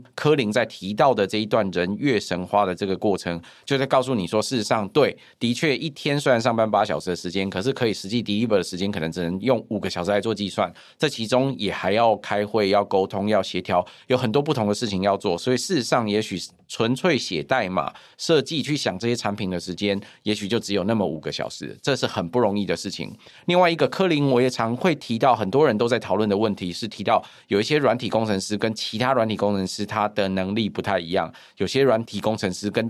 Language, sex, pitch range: Chinese, male, 95-125 Hz